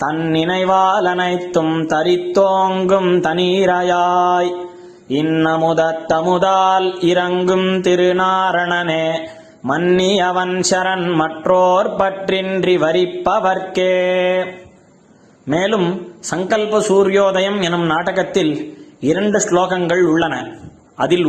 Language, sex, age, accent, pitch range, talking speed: Tamil, male, 20-39, native, 165-185 Hz, 65 wpm